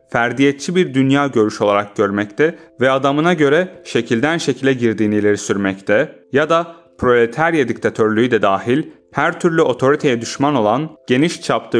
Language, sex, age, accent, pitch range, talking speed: Turkish, male, 30-49, native, 110-150 Hz, 135 wpm